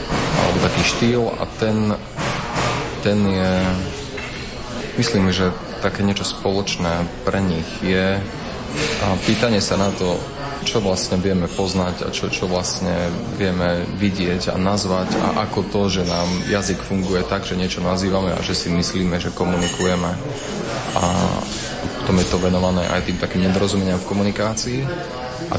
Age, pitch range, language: 30-49, 90-100 Hz, Slovak